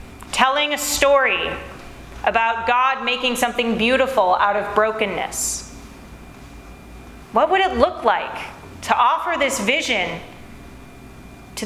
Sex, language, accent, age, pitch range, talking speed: female, English, American, 30-49, 220-270 Hz, 110 wpm